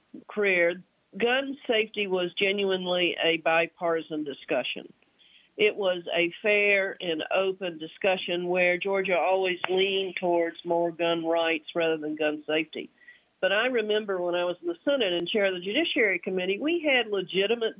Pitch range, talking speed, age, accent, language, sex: 175-215 Hz, 150 wpm, 50-69, American, English, female